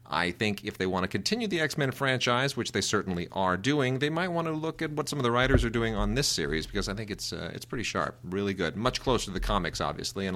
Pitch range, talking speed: 95-130 Hz, 280 wpm